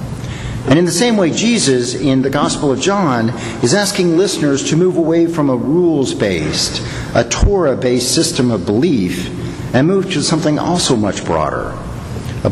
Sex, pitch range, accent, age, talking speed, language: male, 125-165 Hz, American, 50-69, 160 wpm, English